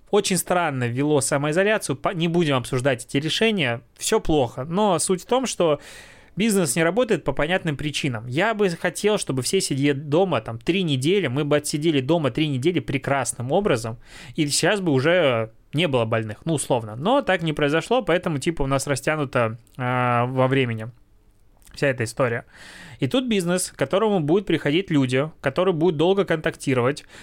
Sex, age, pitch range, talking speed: male, 20-39, 130-180 Hz, 165 wpm